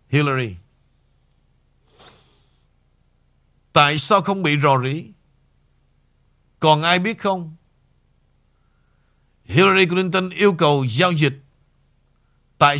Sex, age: male, 60-79